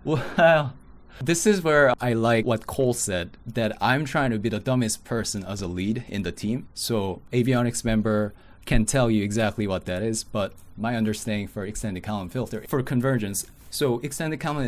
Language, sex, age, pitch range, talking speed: English, male, 20-39, 100-125 Hz, 185 wpm